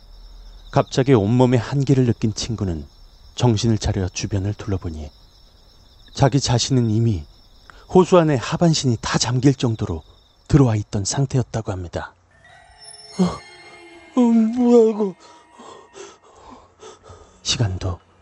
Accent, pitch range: native, 90-120 Hz